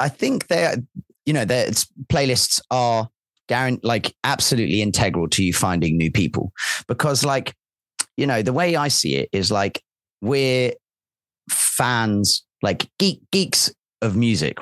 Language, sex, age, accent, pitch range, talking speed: English, male, 30-49, British, 100-130 Hz, 140 wpm